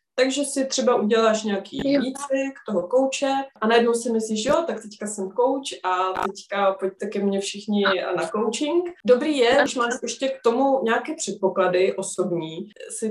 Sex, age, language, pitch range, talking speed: female, 20-39, Czech, 190-225 Hz, 170 wpm